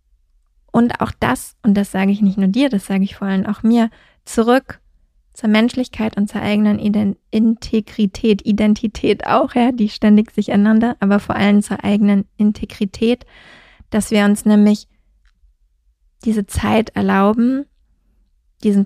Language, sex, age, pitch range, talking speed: German, female, 20-39, 200-225 Hz, 145 wpm